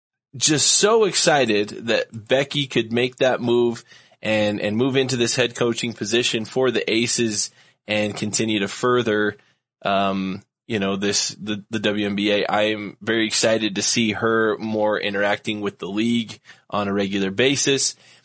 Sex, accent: male, American